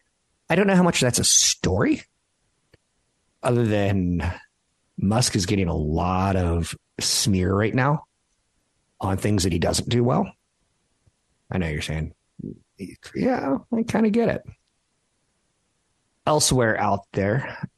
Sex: male